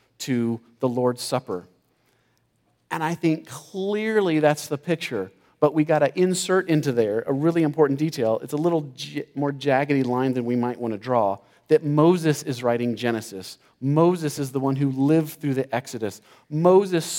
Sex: male